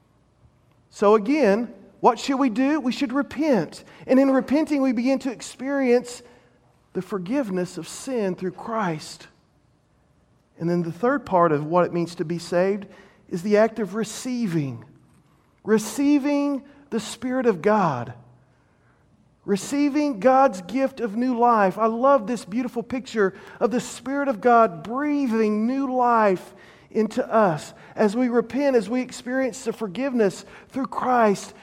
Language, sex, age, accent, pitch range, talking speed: English, male, 40-59, American, 185-255 Hz, 140 wpm